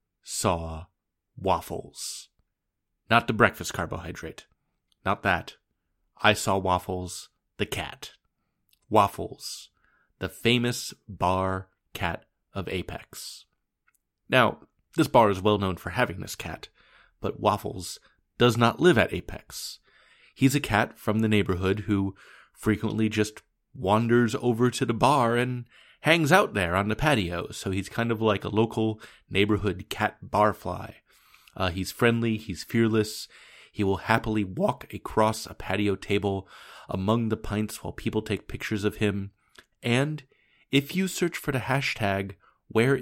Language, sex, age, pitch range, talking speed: English, male, 30-49, 95-120 Hz, 135 wpm